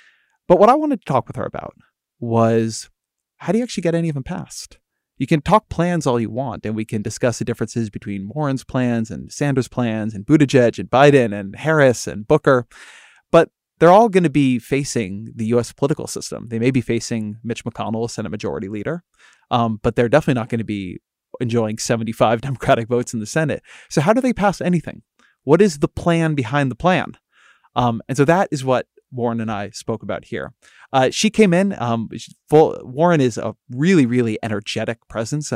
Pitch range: 115-145 Hz